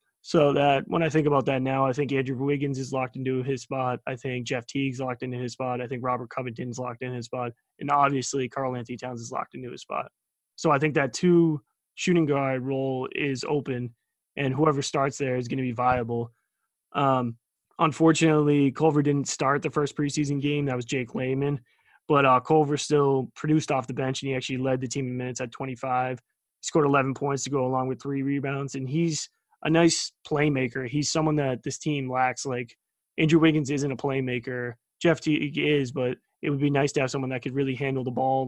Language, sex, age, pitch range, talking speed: English, male, 20-39, 130-145 Hz, 215 wpm